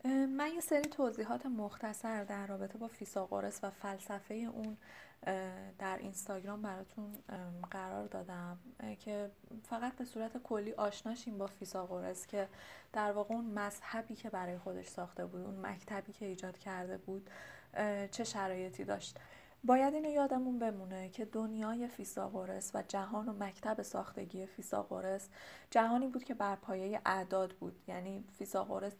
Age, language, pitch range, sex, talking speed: 20-39, Persian, 190-230 Hz, female, 135 wpm